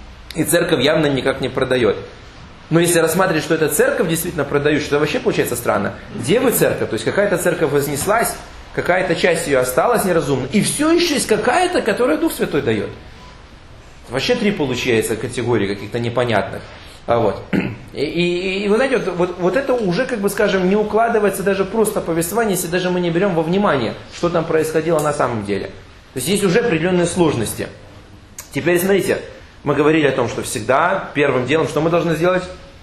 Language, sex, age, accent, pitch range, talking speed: Russian, male, 30-49, native, 130-190 Hz, 175 wpm